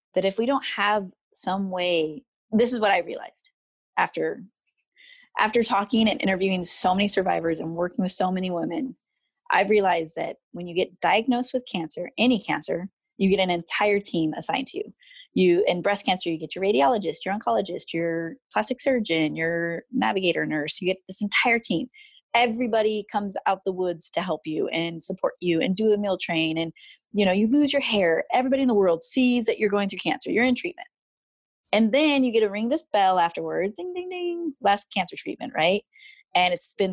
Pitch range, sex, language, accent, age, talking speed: 180-250 Hz, female, English, American, 20-39, 195 wpm